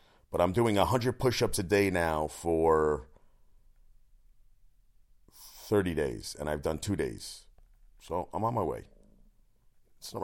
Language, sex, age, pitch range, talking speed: English, male, 40-59, 90-110 Hz, 140 wpm